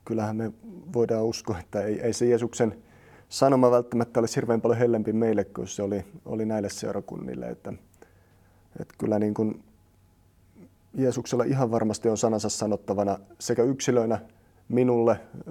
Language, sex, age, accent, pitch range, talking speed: Finnish, male, 30-49, native, 100-120 Hz, 140 wpm